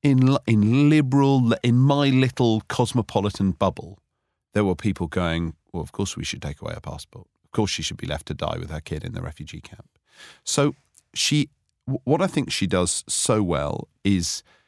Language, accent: English, British